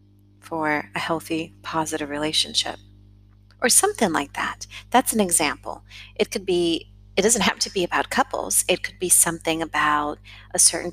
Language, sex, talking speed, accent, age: English, female, 160 wpm, American, 30-49